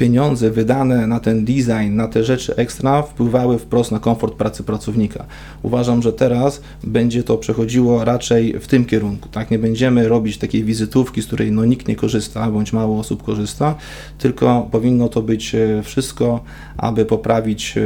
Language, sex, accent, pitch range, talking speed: Polish, male, native, 110-125 Hz, 160 wpm